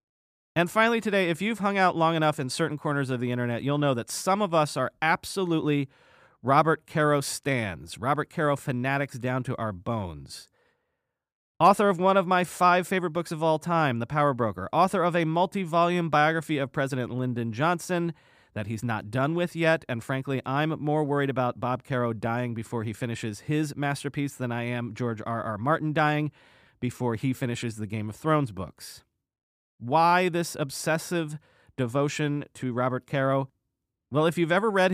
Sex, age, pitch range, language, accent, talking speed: male, 30-49, 120-170 Hz, English, American, 180 wpm